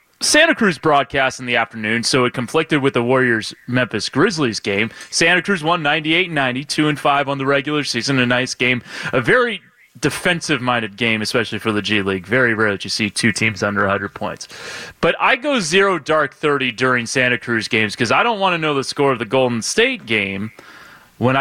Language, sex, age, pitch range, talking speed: English, male, 30-49, 110-150 Hz, 195 wpm